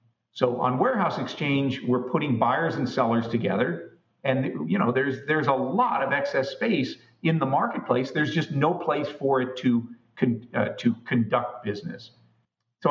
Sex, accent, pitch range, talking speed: male, American, 125-155 Hz, 165 wpm